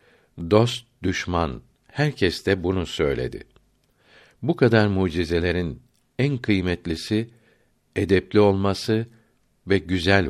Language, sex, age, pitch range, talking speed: Turkish, male, 60-79, 85-110 Hz, 85 wpm